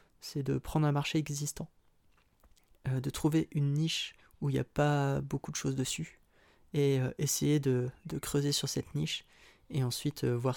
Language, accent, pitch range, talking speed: French, French, 125-145 Hz, 185 wpm